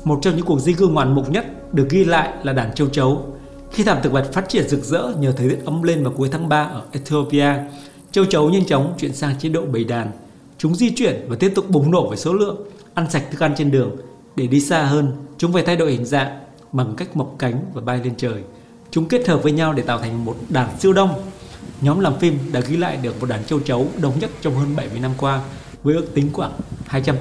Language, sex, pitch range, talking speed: Vietnamese, male, 130-165 Hz, 255 wpm